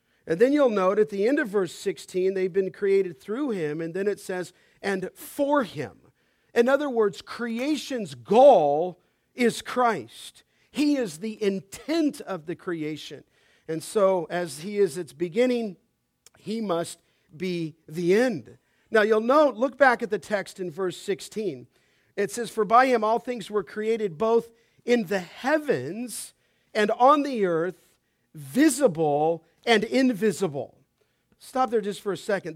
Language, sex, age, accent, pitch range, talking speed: English, male, 50-69, American, 175-240 Hz, 155 wpm